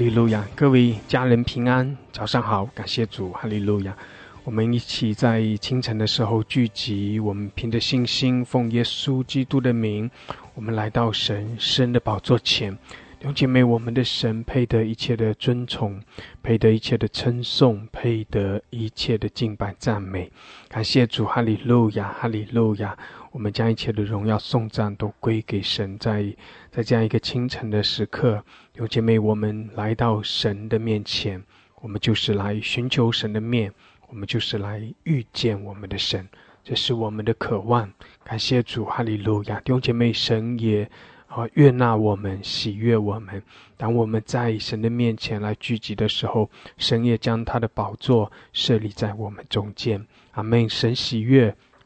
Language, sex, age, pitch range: English, male, 20-39, 105-120 Hz